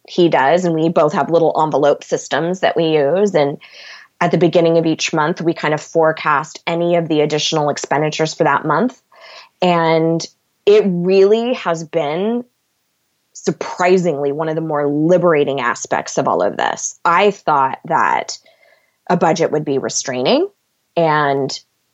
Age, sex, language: 20-39, female, English